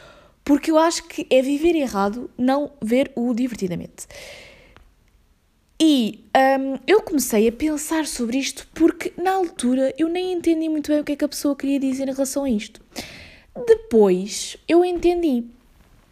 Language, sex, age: Portuguese, female, 20-39